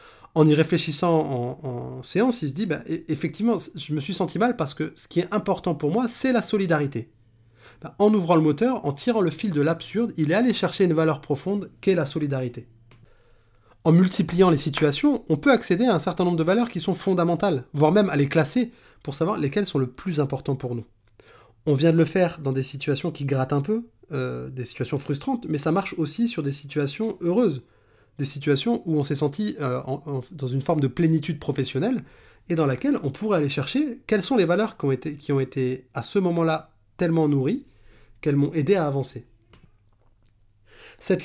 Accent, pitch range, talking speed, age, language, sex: French, 130-175 Hz, 210 wpm, 20-39, French, male